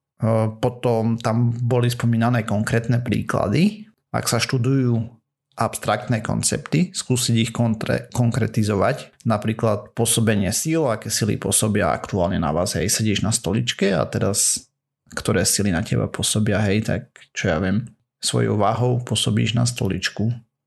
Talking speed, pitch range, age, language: 130 wpm, 110-130 Hz, 30-49, Slovak